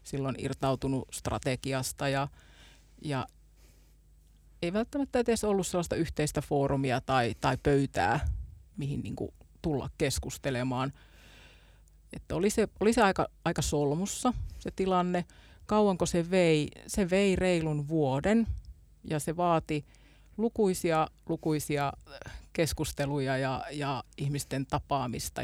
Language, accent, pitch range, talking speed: Finnish, native, 130-170 Hz, 110 wpm